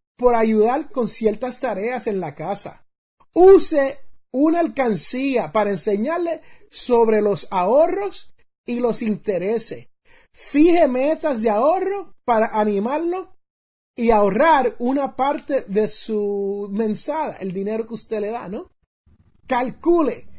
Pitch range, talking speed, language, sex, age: 215-290 Hz, 120 wpm, Spanish, male, 30-49